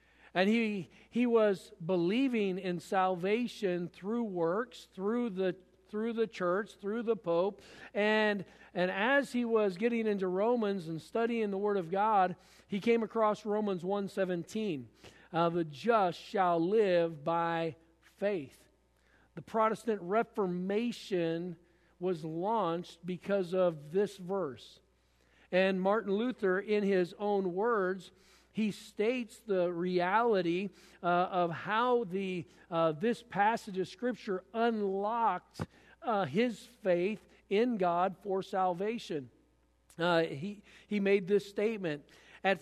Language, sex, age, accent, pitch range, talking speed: English, male, 50-69, American, 180-220 Hz, 125 wpm